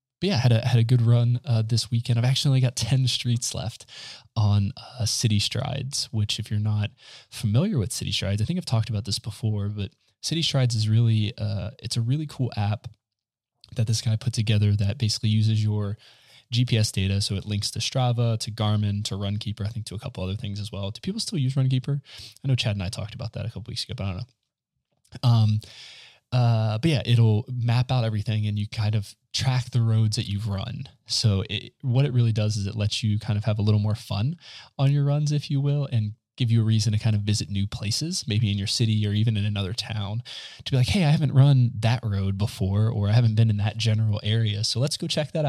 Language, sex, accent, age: English, male, American, 20-39